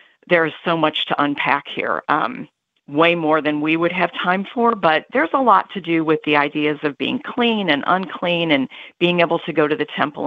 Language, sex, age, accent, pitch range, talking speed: English, female, 50-69, American, 160-210 Hz, 215 wpm